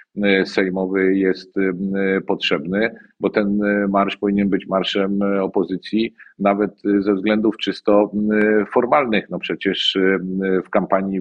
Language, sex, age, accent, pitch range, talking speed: Polish, male, 50-69, native, 90-100 Hz, 100 wpm